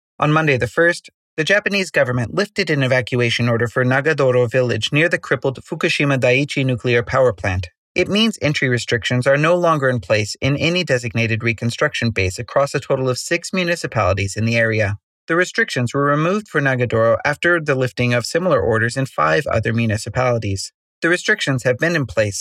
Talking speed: 180 wpm